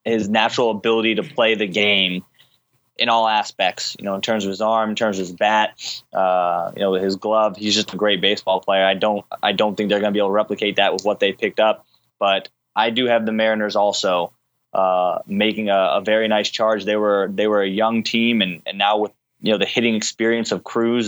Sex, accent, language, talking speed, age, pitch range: male, American, English, 235 wpm, 20-39, 100-115 Hz